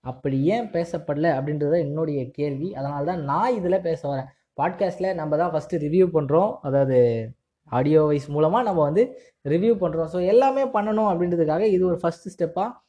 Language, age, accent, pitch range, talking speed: Tamil, 20-39, native, 150-195 Hz, 155 wpm